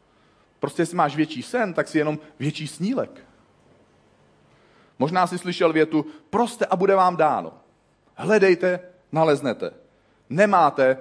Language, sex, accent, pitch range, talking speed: Czech, male, native, 130-175 Hz, 120 wpm